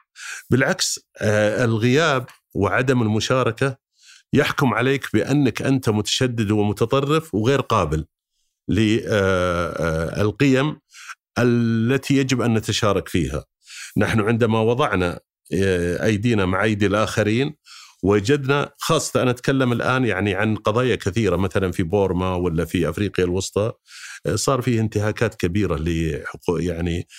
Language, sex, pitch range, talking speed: Arabic, male, 90-120 Hz, 100 wpm